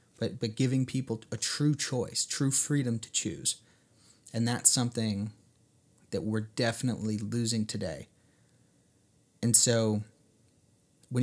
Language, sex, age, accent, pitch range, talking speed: English, male, 30-49, American, 110-120 Hz, 120 wpm